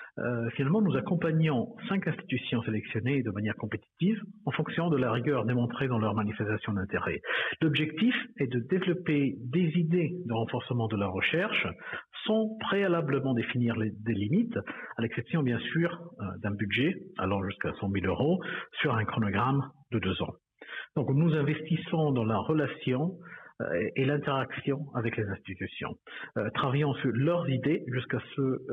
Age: 50-69